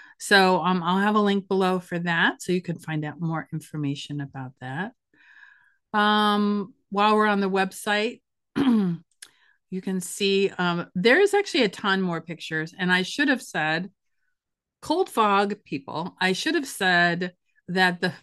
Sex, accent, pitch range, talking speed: female, American, 170-215 Hz, 160 wpm